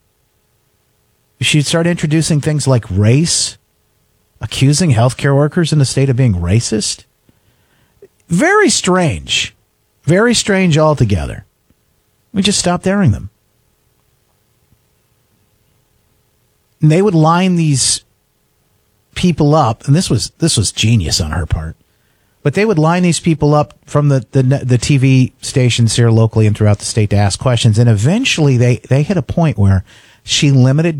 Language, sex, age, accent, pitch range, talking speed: English, male, 40-59, American, 105-155 Hz, 140 wpm